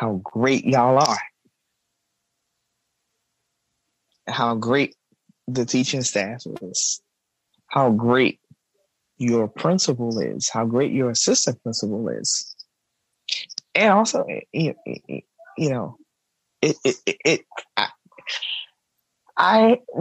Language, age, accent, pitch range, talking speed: English, 20-39, American, 110-155 Hz, 95 wpm